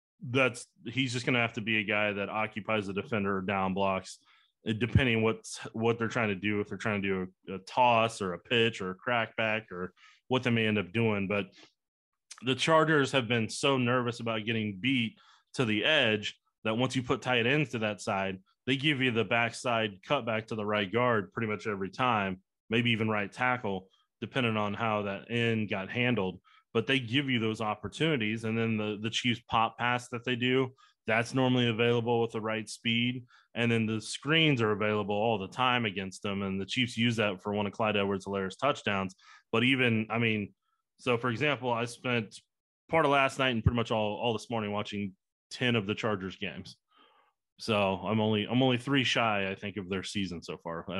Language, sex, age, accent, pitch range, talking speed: English, male, 30-49, American, 105-120 Hz, 215 wpm